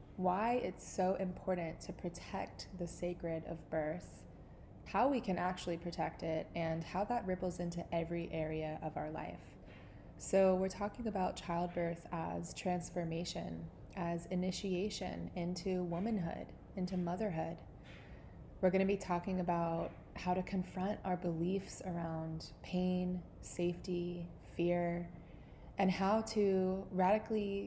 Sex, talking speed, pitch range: female, 125 wpm, 170-190 Hz